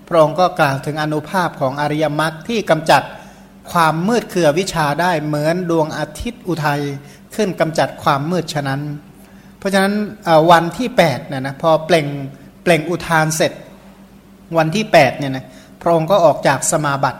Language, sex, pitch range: Thai, male, 150-180 Hz